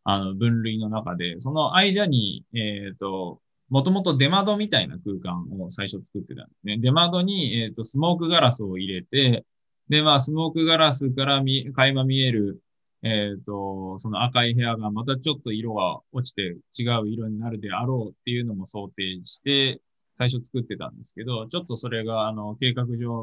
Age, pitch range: 20-39, 110-140 Hz